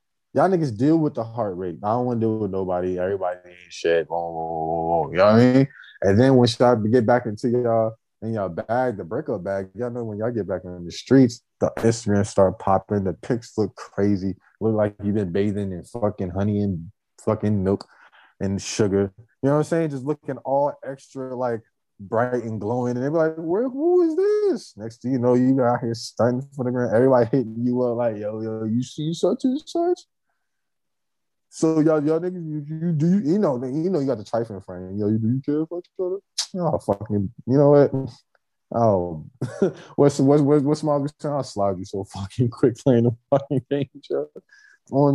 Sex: male